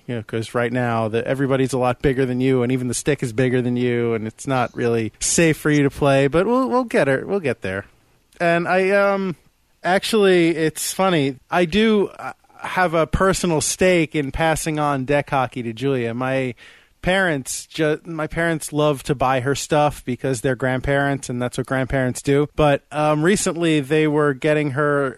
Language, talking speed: English, 195 wpm